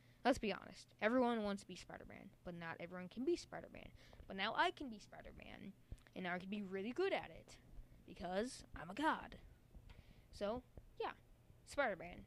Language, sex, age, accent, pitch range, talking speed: English, female, 20-39, American, 150-210 Hz, 175 wpm